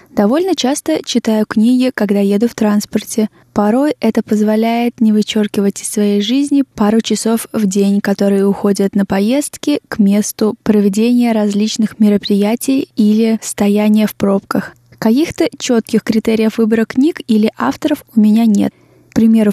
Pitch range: 210-235 Hz